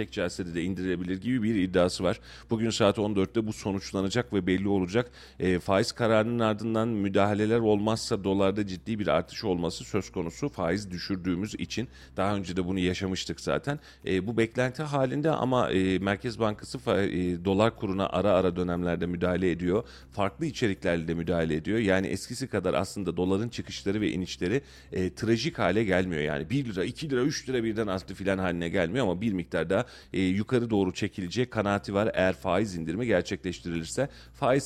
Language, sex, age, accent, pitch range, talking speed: Turkish, male, 40-59, native, 90-115 Hz, 170 wpm